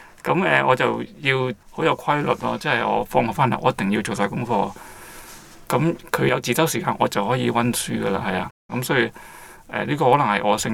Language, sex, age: Chinese, male, 20-39